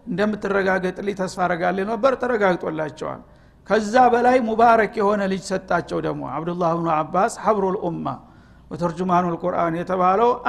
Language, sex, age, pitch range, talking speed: Amharic, male, 60-79, 200-250 Hz, 115 wpm